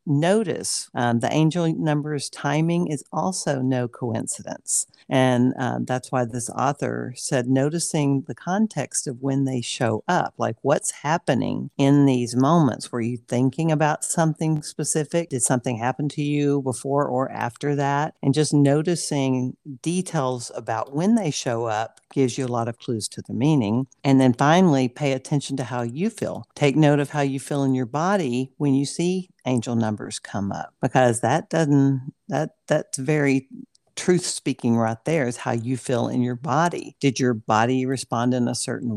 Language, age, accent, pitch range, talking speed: English, 50-69, American, 125-150 Hz, 175 wpm